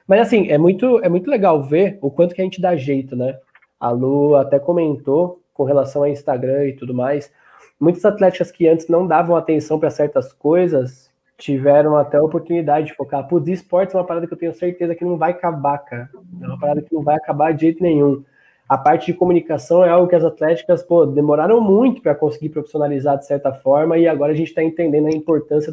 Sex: male